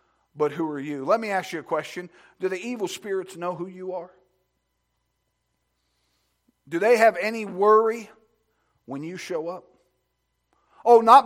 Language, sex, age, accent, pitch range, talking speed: English, male, 50-69, American, 155-260 Hz, 155 wpm